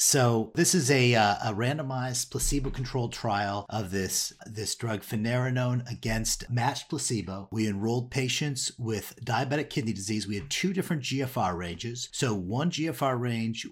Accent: American